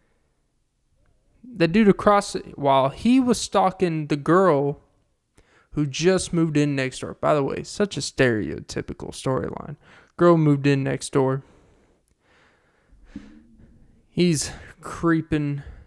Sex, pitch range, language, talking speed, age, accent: male, 135-180 Hz, English, 110 wpm, 20-39, American